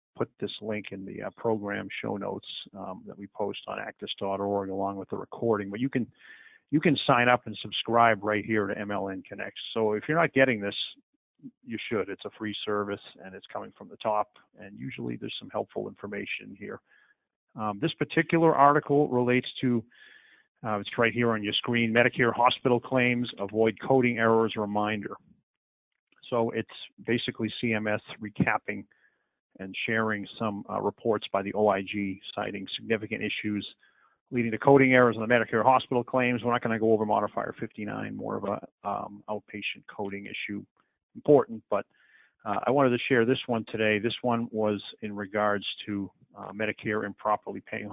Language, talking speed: English, 170 wpm